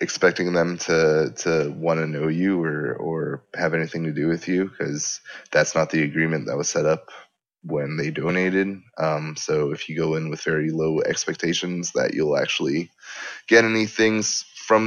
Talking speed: 180 wpm